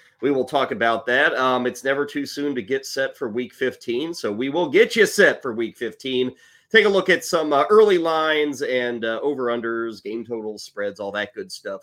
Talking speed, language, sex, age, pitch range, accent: 220 wpm, English, male, 30-49, 120-170 Hz, American